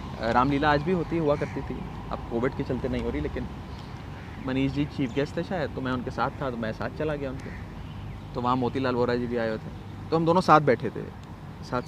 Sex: male